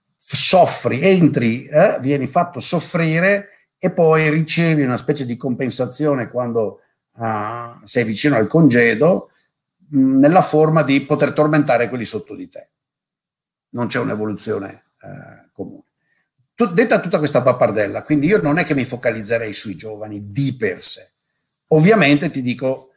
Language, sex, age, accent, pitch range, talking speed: Italian, male, 50-69, native, 110-150 Hz, 130 wpm